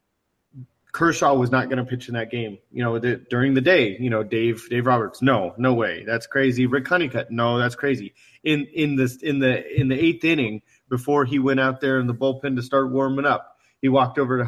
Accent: American